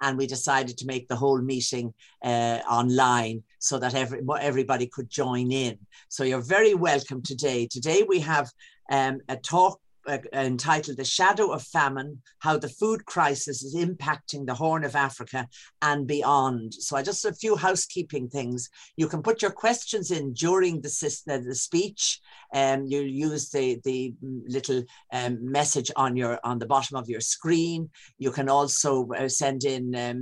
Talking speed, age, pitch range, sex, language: 170 wpm, 50-69, 130-150 Hz, female, English